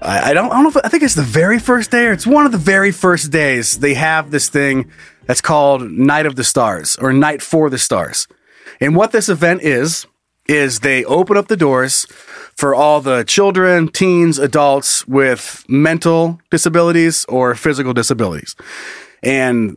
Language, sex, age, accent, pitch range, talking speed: English, male, 30-49, American, 135-175 Hz, 180 wpm